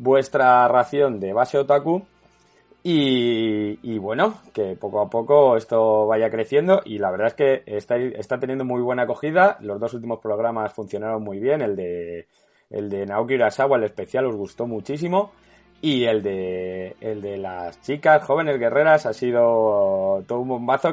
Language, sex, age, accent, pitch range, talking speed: Spanish, male, 20-39, Spanish, 105-135 Hz, 165 wpm